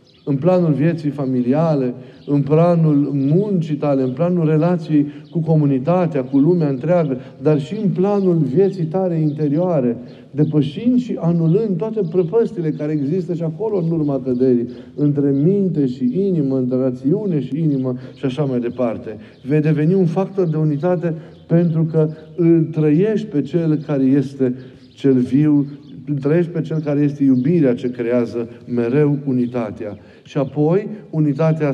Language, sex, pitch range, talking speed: Romanian, male, 135-175 Hz, 145 wpm